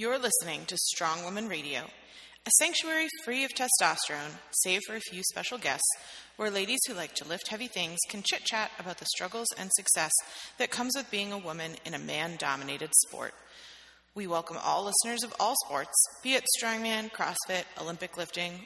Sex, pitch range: female, 175-235 Hz